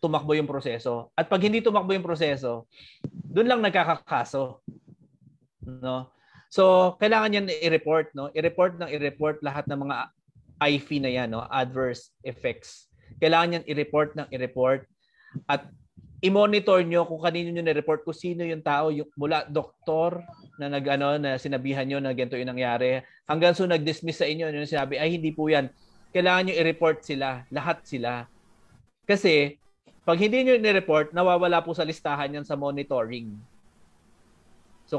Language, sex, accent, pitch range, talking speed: English, male, Filipino, 140-170 Hz, 150 wpm